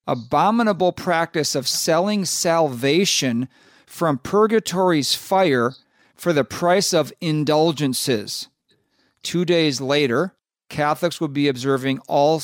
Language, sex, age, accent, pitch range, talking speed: English, male, 40-59, American, 135-175 Hz, 100 wpm